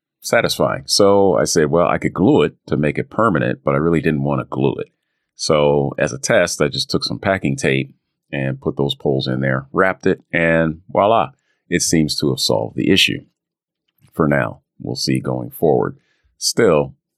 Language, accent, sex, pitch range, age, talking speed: English, American, male, 65-80 Hz, 40-59, 190 wpm